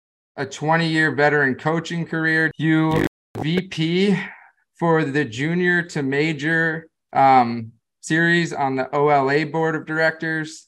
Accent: American